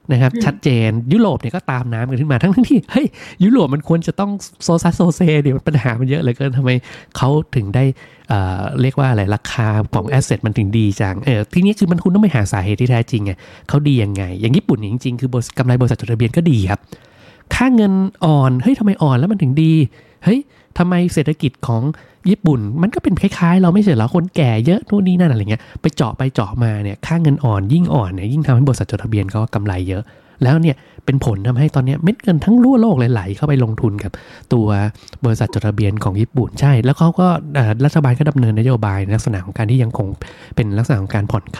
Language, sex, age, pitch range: Thai, male, 20-39, 110-160 Hz